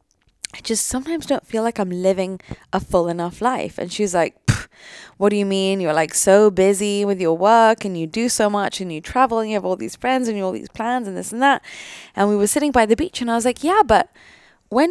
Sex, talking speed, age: female, 260 wpm, 10-29